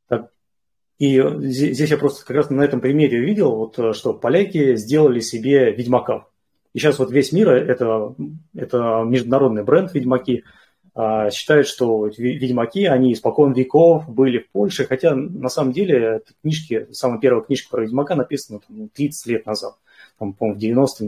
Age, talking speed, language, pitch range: 30-49, 150 wpm, Russian, 115-140 Hz